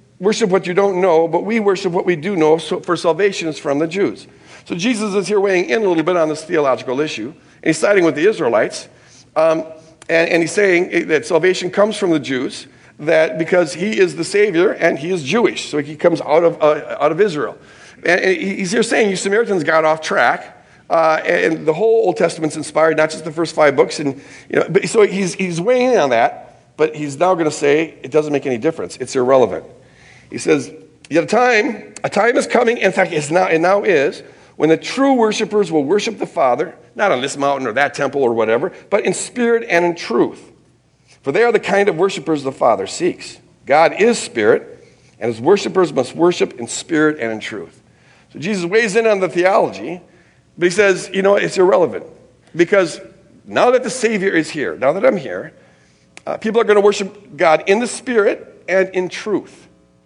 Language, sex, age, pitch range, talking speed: English, male, 50-69, 155-200 Hz, 215 wpm